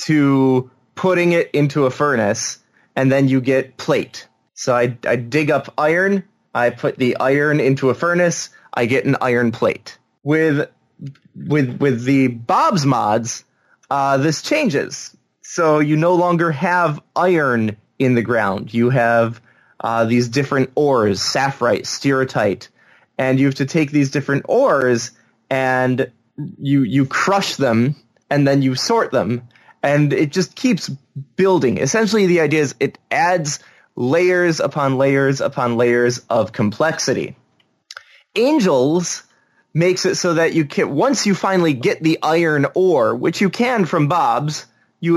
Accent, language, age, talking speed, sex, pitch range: American, English, 20-39, 145 wpm, male, 130-165 Hz